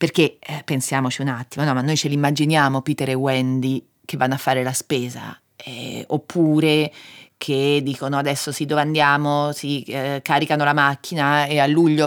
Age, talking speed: 30-49, 180 wpm